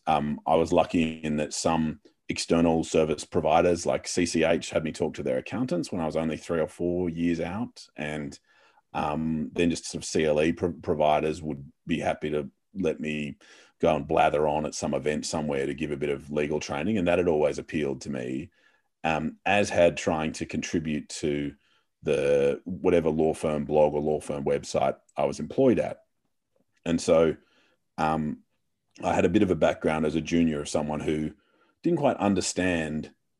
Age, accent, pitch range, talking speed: 30-49, Australian, 75-85 Hz, 185 wpm